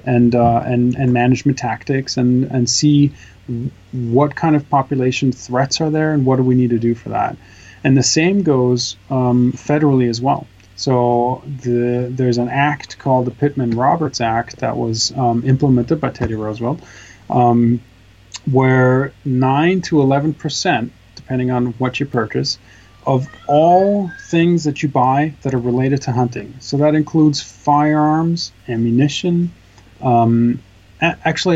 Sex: male